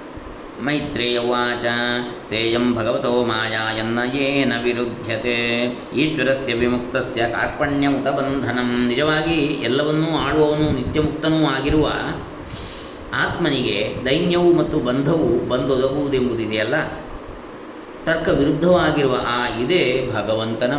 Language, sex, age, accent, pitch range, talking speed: Kannada, male, 20-39, native, 120-150 Hz, 70 wpm